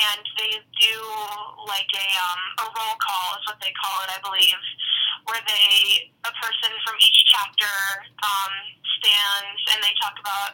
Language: English